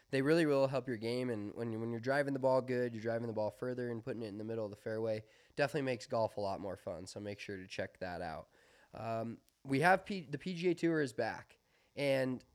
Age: 20-39